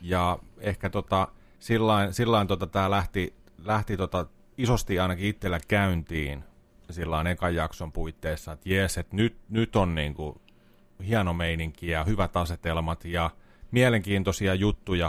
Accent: native